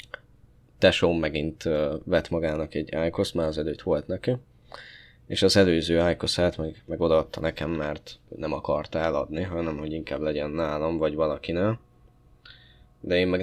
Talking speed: 150 wpm